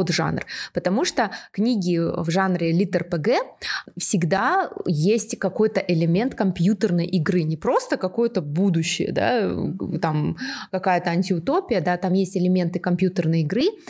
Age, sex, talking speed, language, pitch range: 20-39, female, 120 wpm, Russian, 175-220 Hz